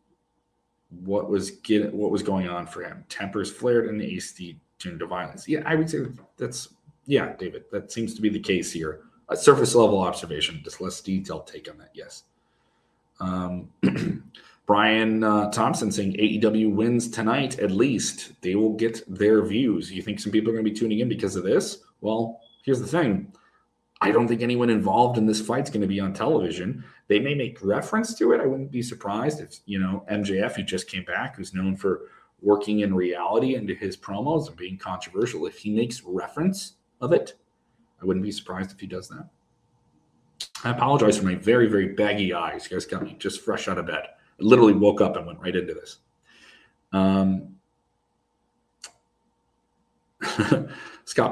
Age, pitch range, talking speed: 30-49, 95-115 Hz, 185 wpm